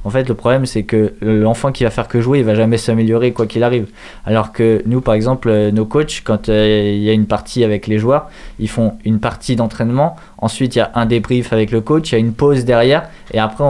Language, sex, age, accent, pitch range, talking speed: French, male, 20-39, French, 110-130 Hz, 255 wpm